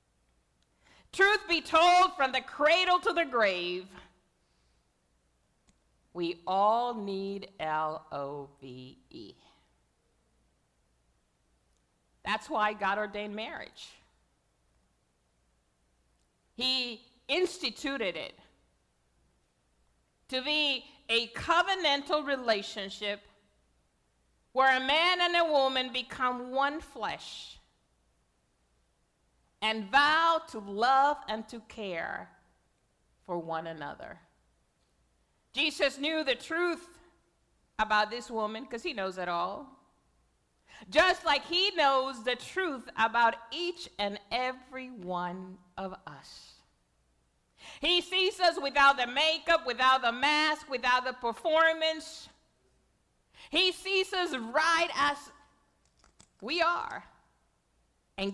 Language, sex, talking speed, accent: English, female, 95 wpm, American